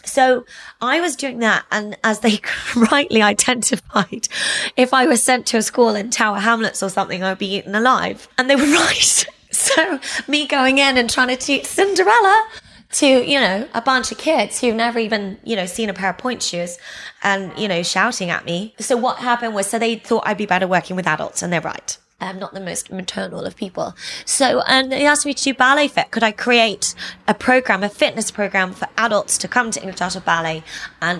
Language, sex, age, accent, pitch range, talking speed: English, female, 20-39, British, 190-255 Hz, 215 wpm